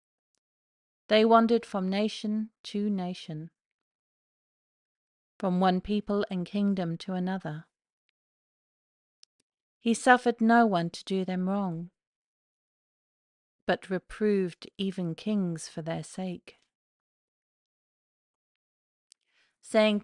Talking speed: 85 wpm